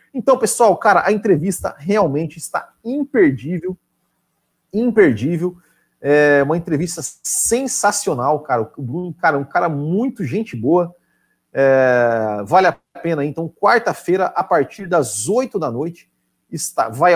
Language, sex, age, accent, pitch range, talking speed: Portuguese, male, 40-59, Brazilian, 125-195 Hz, 125 wpm